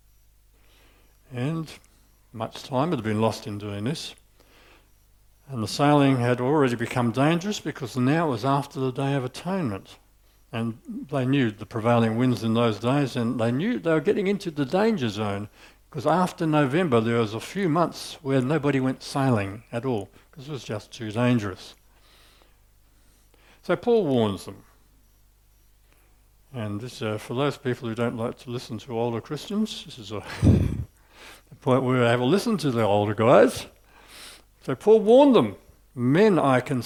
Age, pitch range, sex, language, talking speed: 60-79, 105-145 Hz, male, English, 165 wpm